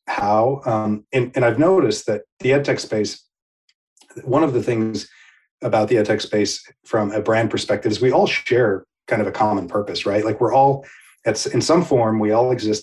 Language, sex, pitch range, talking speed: English, male, 105-120 Hz, 205 wpm